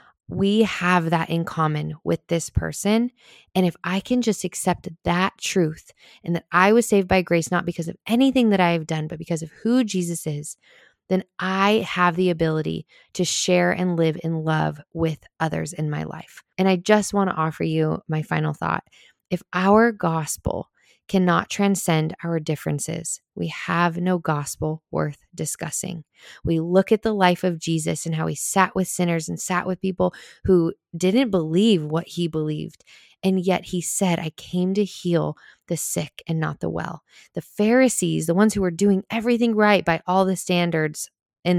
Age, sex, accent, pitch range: 20-39, female, American, 165-195 Hz